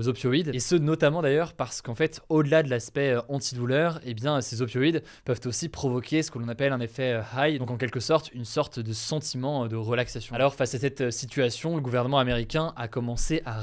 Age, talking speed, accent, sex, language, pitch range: 20-39, 210 wpm, French, male, French, 120-150 Hz